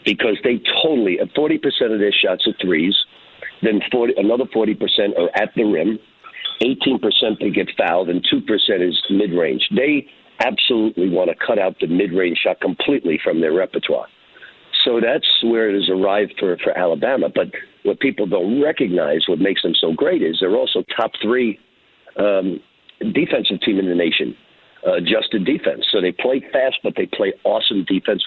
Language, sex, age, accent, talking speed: English, male, 50-69, American, 170 wpm